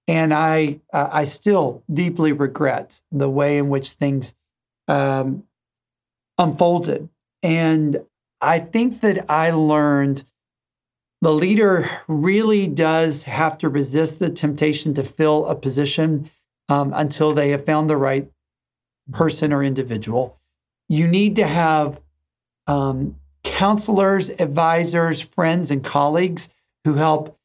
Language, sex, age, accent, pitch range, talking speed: English, male, 40-59, American, 145-180 Hz, 120 wpm